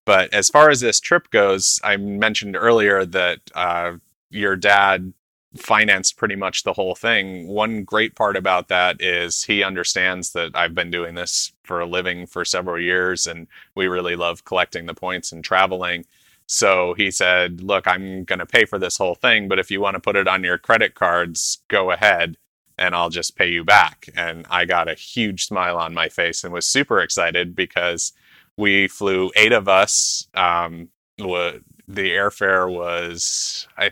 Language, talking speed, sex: English, 185 wpm, male